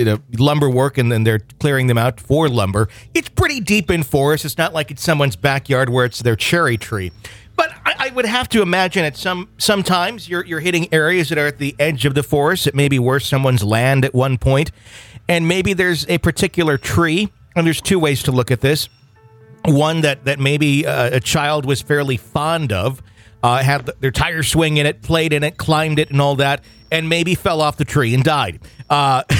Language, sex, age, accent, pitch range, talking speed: English, male, 40-59, American, 120-155 Hz, 220 wpm